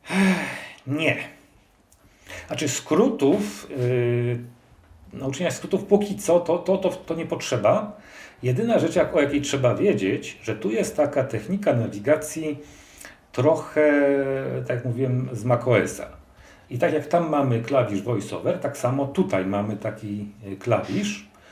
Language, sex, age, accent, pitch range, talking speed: Polish, male, 40-59, native, 120-160 Hz, 125 wpm